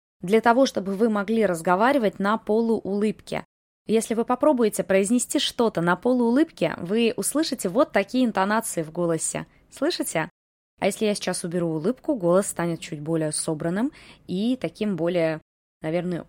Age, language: 20-39, Russian